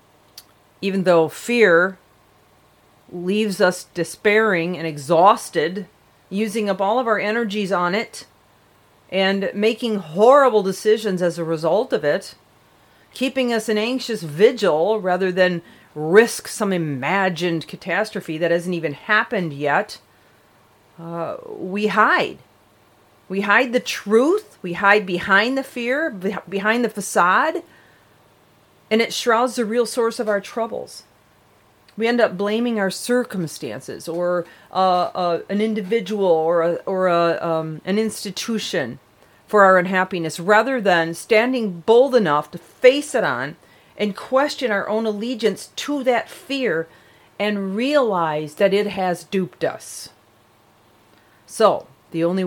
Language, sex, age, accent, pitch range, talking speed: English, female, 40-59, American, 165-220 Hz, 130 wpm